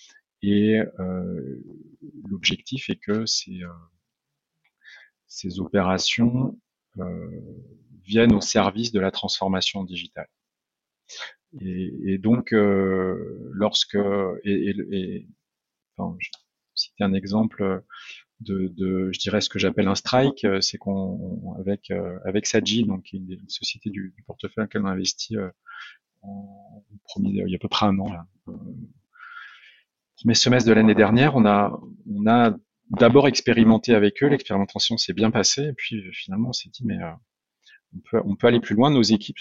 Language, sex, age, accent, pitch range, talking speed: French, male, 30-49, French, 95-115 Hz, 155 wpm